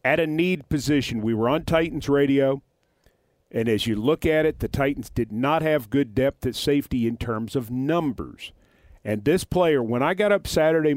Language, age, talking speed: English, 50-69, 195 wpm